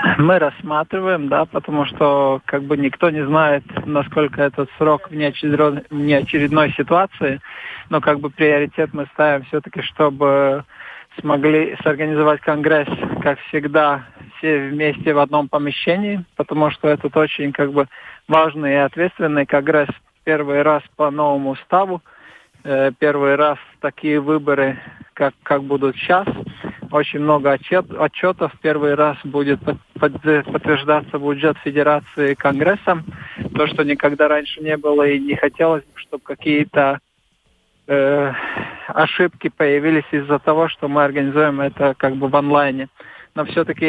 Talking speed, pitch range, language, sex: 135 wpm, 140-155 Hz, Russian, male